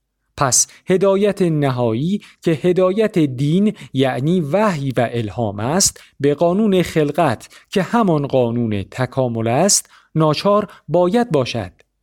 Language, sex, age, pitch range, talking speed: Persian, male, 50-69, 130-190 Hz, 110 wpm